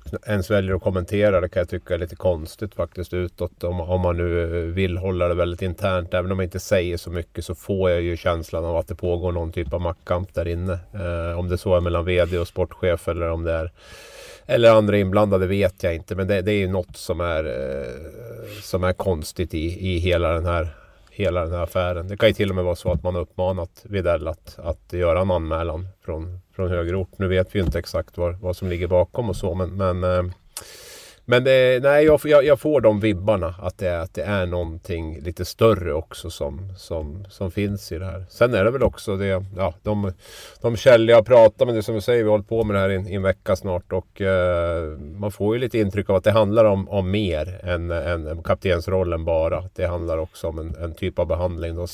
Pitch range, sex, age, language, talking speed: 85-100 Hz, male, 30-49, Swedish, 235 wpm